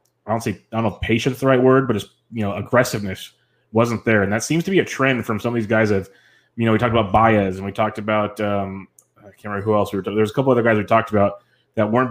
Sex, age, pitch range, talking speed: male, 20-39, 105-120 Hz, 295 wpm